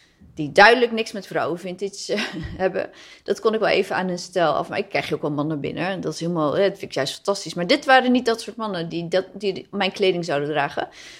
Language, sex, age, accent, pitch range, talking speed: Dutch, female, 30-49, Dutch, 180-230 Hz, 245 wpm